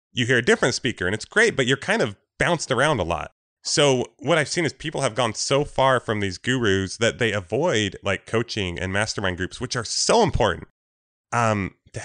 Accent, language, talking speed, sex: American, English, 215 wpm, male